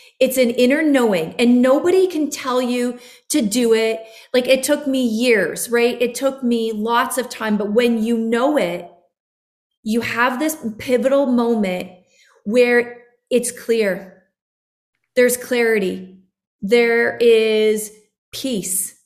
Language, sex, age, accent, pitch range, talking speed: English, female, 30-49, American, 220-250 Hz, 130 wpm